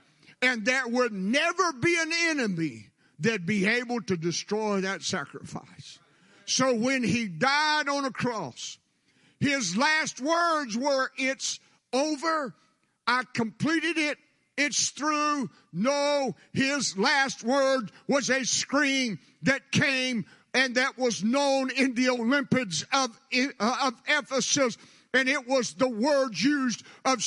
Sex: male